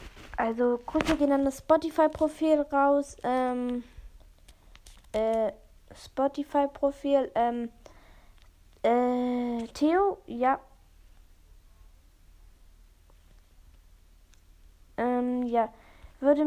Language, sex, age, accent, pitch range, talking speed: German, female, 20-39, German, 225-285 Hz, 65 wpm